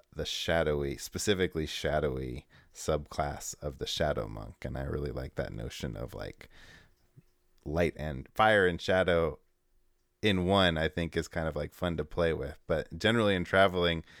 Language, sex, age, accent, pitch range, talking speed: English, male, 30-49, American, 75-100 Hz, 160 wpm